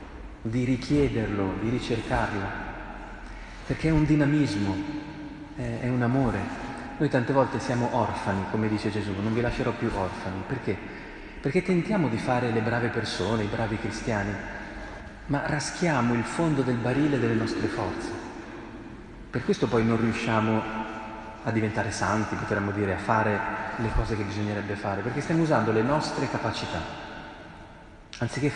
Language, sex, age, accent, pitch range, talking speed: Italian, male, 30-49, native, 105-130 Hz, 145 wpm